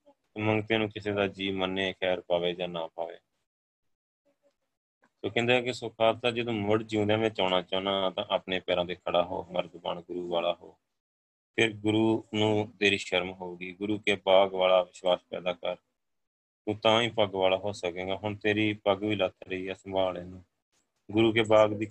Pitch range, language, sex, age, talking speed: 95-110 Hz, Punjabi, male, 20-39, 175 wpm